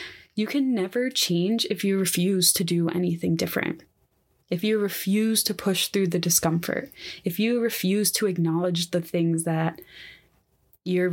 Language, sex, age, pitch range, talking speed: English, female, 20-39, 170-200 Hz, 150 wpm